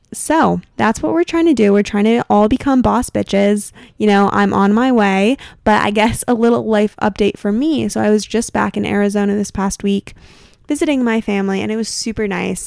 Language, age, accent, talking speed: English, 10-29, American, 225 wpm